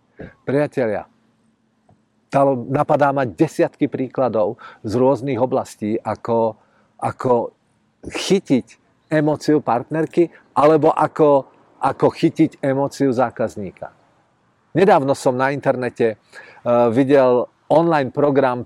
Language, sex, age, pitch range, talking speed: Czech, male, 50-69, 130-165 Hz, 85 wpm